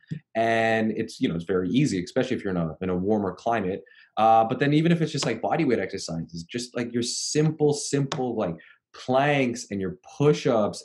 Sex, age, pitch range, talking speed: male, 20-39, 105-140 Hz, 200 wpm